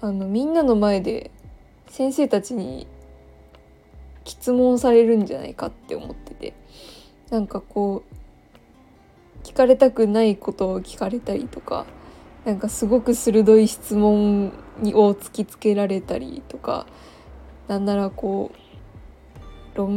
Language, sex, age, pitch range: Japanese, female, 20-39, 190-230 Hz